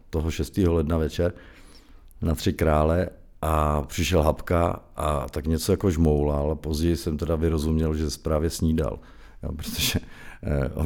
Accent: native